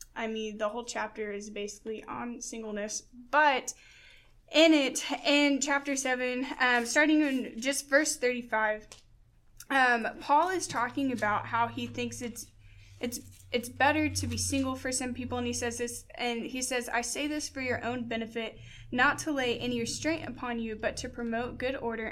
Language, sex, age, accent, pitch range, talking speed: English, female, 10-29, American, 225-275 Hz, 175 wpm